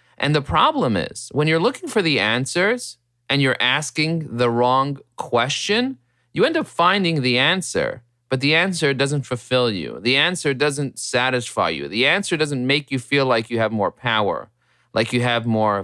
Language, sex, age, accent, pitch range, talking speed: English, male, 30-49, American, 120-150 Hz, 180 wpm